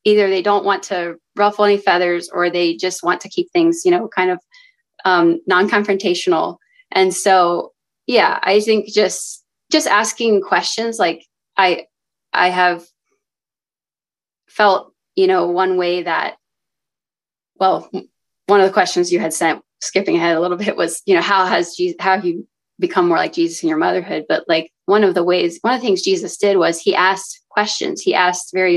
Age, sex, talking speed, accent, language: 20-39, female, 185 wpm, American, English